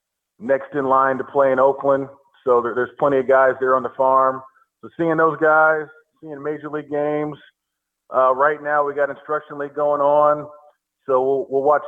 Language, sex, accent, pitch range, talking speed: English, male, American, 130-145 Hz, 190 wpm